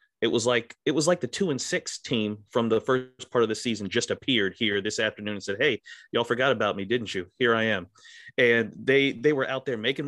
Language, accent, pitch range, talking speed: English, American, 105-135 Hz, 250 wpm